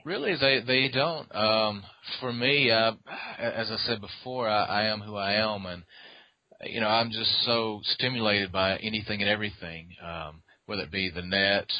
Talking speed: 180 wpm